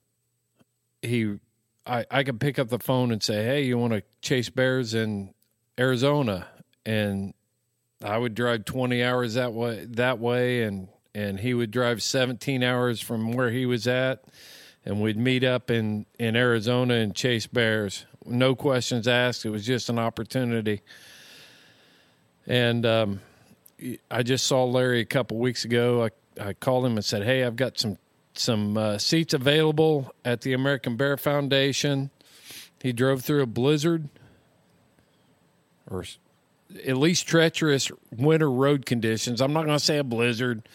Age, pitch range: 40-59, 115-130 Hz